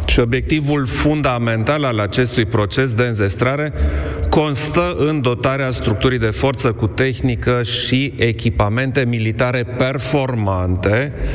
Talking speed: 105 wpm